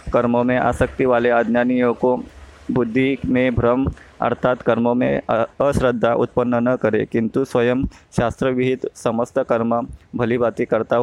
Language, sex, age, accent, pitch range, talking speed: Hindi, male, 20-39, native, 115-125 Hz, 135 wpm